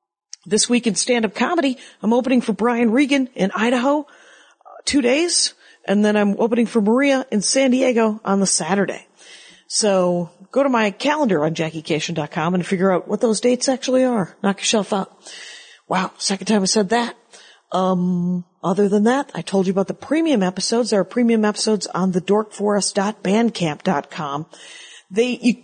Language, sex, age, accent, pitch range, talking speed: English, female, 40-59, American, 180-240 Hz, 160 wpm